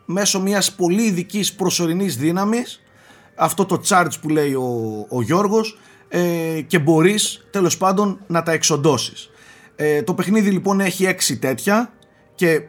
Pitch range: 135-195 Hz